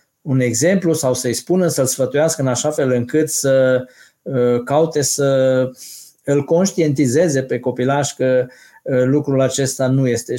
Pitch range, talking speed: 140-175 Hz, 135 wpm